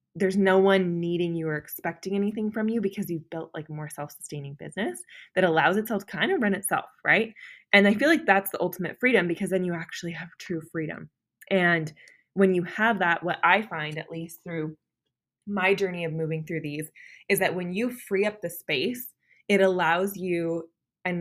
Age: 20-39